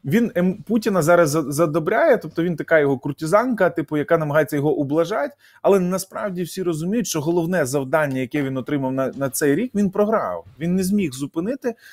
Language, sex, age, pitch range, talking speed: Ukrainian, male, 20-39, 140-180 Hz, 170 wpm